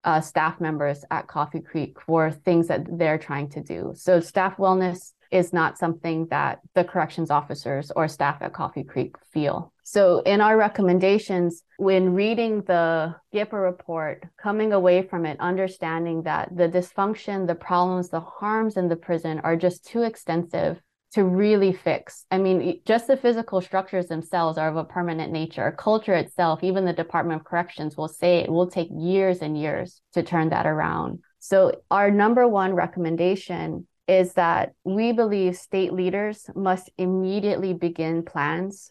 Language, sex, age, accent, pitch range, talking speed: English, female, 20-39, American, 165-190 Hz, 165 wpm